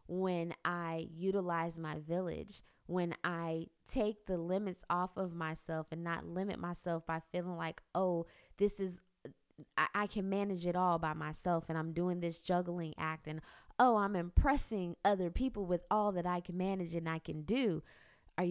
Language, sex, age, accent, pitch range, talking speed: English, female, 20-39, American, 175-205 Hz, 175 wpm